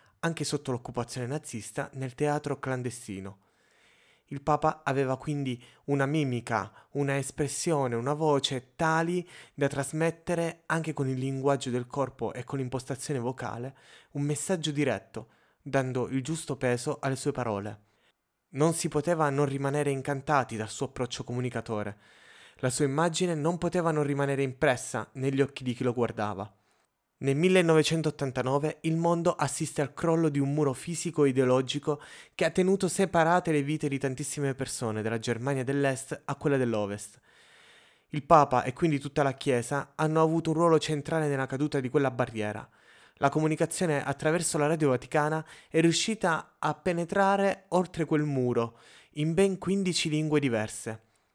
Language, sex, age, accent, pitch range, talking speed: Italian, male, 20-39, native, 130-160 Hz, 145 wpm